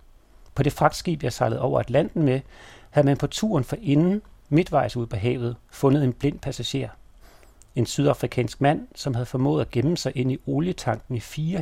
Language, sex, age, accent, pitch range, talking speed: Danish, male, 40-59, native, 115-145 Hz, 185 wpm